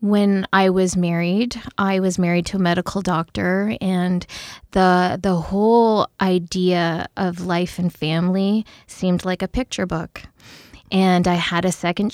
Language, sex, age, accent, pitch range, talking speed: English, female, 20-39, American, 180-210 Hz, 150 wpm